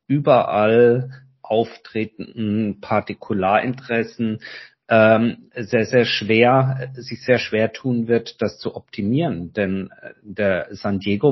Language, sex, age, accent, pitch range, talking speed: German, male, 50-69, German, 110-135 Hz, 100 wpm